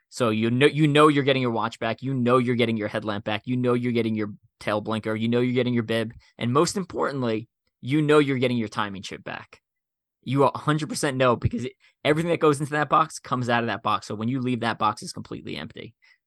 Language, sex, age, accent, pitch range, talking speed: English, male, 20-39, American, 105-130 Hz, 245 wpm